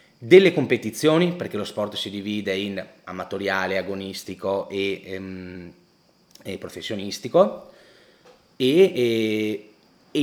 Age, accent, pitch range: 30-49, native, 100-125 Hz